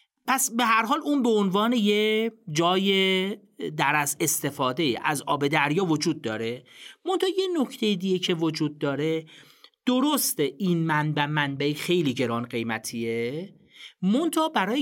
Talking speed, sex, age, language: 135 wpm, male, 40-59, Persian